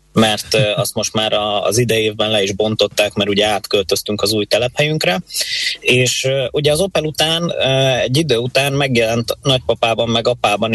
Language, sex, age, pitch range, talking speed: Hungarian, male, 20-39, 105-130 Hz, 150 wpm